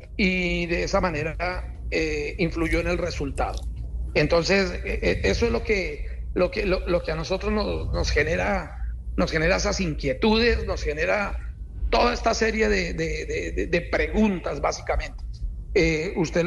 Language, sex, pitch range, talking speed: Spanish, male, 165-200 Hz, 130 wpm